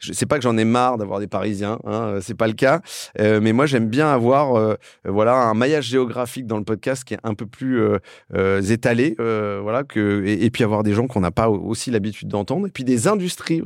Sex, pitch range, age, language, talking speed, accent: male, 110-135 Hz, 30-49, French, 240 wpm, French